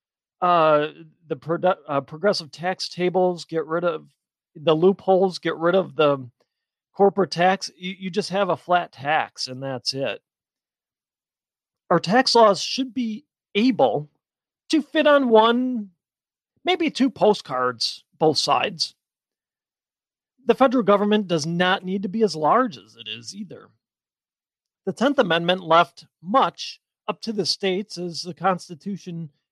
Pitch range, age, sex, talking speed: 155-205 Hz, 40-59, male, 140 wpm